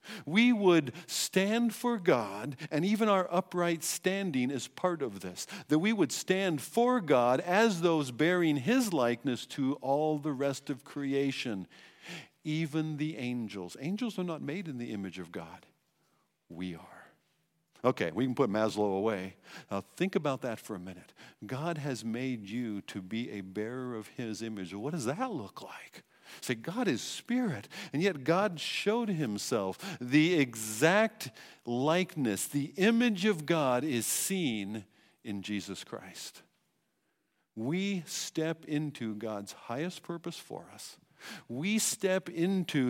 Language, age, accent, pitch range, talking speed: English, 50-69, American, 120-190 Hz, 150 wpm